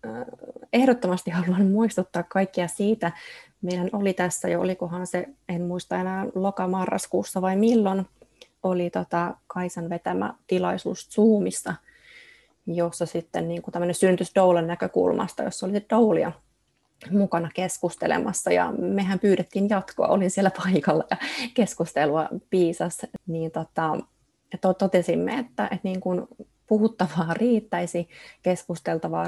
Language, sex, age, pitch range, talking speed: Finnish, female, 20-39, 175-205 Hz, 115 wpm